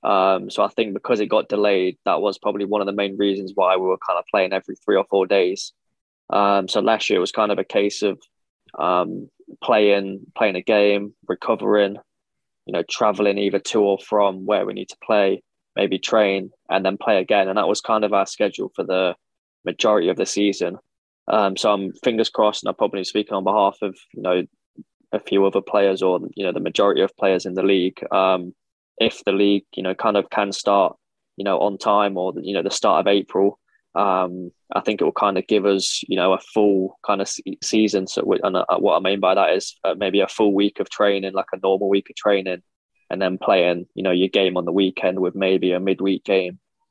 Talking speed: 225 wpm